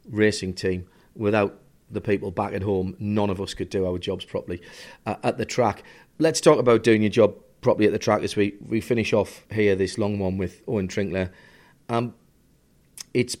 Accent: British